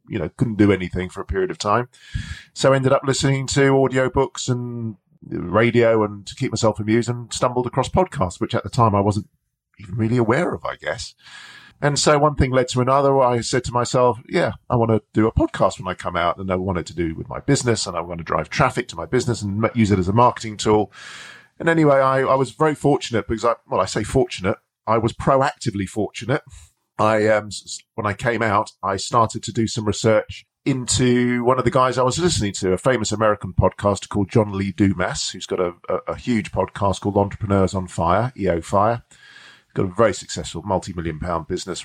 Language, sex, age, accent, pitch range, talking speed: English, male, 40-59, British, 100-130 Hz, 220 wpm